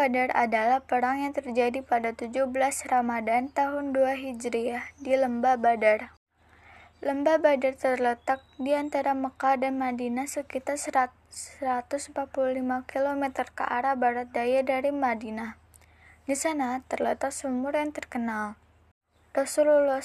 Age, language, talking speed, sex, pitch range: 20-39, Indonesian, 115 wpm, female, 245-275 Hz